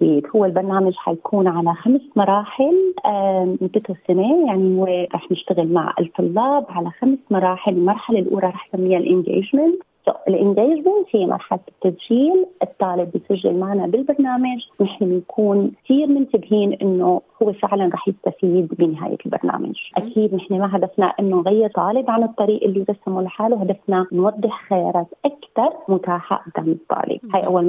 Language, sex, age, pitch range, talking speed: Arabic, female, 30-49, 185-235 Hz, 135 wpm